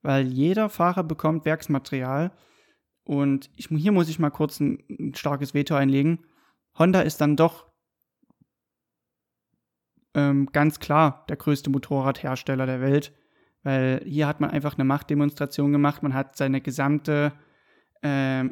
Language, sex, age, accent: German, male, 30-49, German